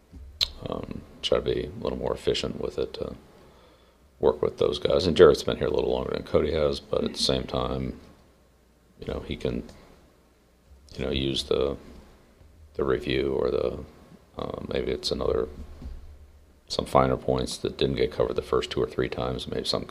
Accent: American